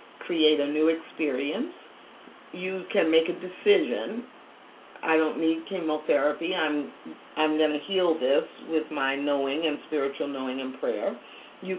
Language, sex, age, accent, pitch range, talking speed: English, female, 40-59, American, 155-185 Hz, 145 wpm